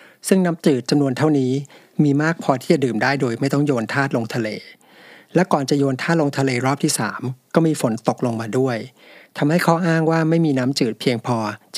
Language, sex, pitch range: Thai, male, 120-150 Hz